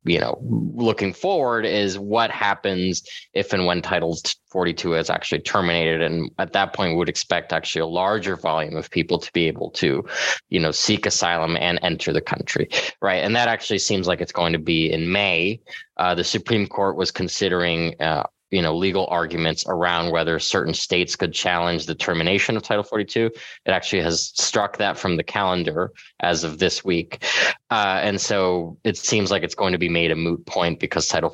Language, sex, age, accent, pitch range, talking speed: English, male, 20-39, American, 85-100 Hz, 195 wpm